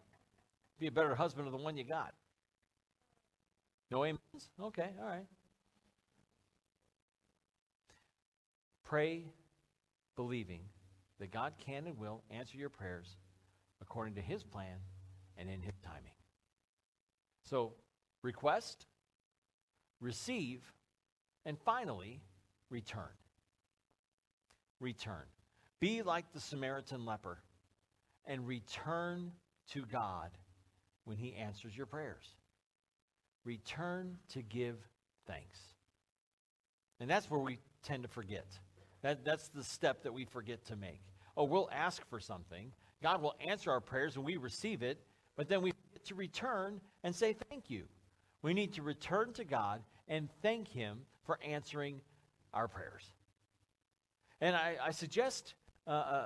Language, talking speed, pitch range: English, 125 wpm, 95-155 Hz